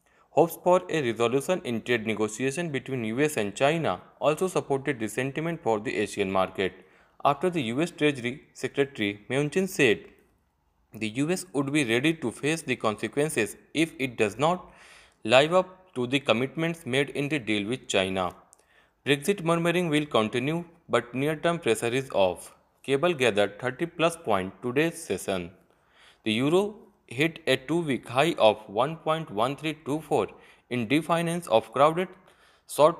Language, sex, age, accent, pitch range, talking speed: English, male, 30-49, Indian, 115-160 Hz, 145 wpm